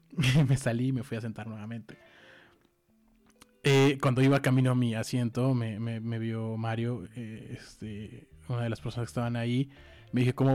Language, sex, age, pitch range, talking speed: Spanish, male, 20-39, 105-130 Hz, 180 wpm